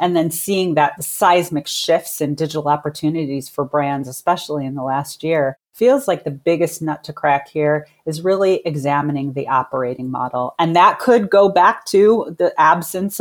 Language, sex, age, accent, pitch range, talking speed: English, female, 30-49, American, 140-160 Hz, 175 wpm